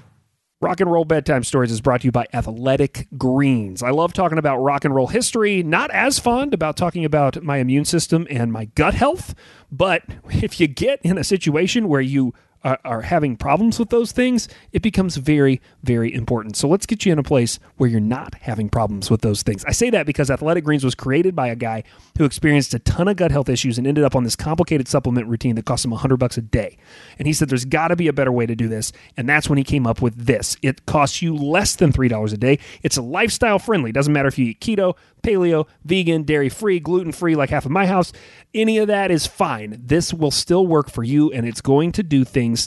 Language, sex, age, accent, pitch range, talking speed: English, male, 40-59, American, 120-165 Hz, 235 wpm